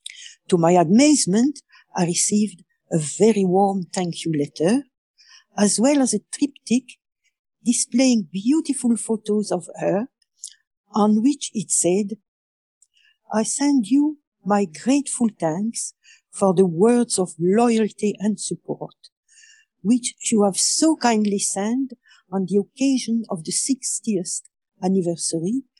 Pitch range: 185-265 Hz